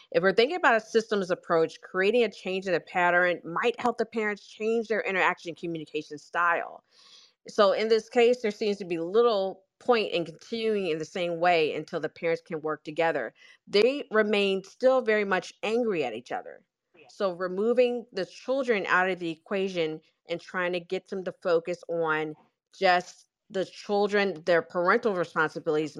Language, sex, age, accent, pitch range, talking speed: English, female, 40-59, American, 170-215 Hz, 175 wpm